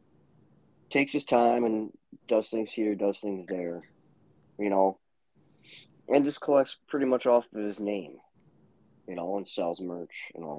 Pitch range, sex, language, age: 90-115 Hz, male, English, 30-49